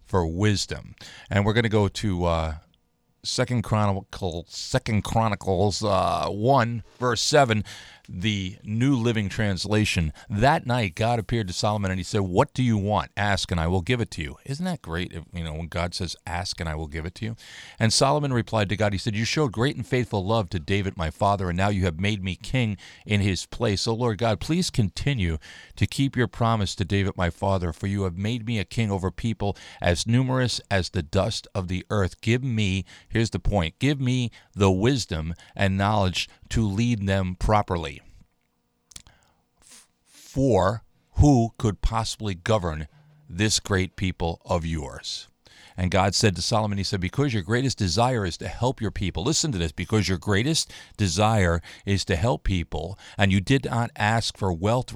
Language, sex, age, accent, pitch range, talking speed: English, male, 40-59, American, 90-115 Hz, 195 wpm